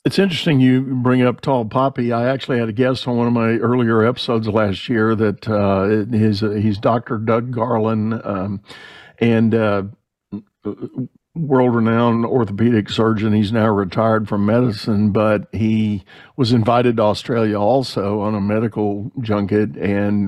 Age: 60-79